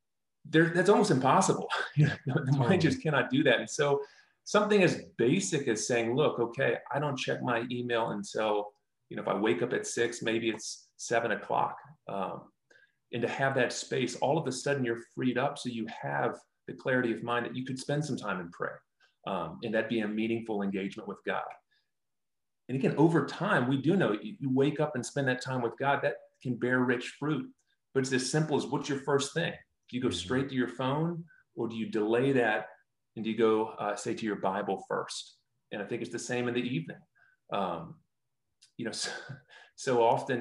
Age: 30-49